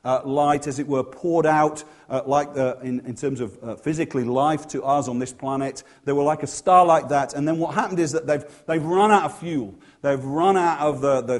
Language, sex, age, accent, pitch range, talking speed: English, male, 40-59, British, 135-160 Hz, 245 wpm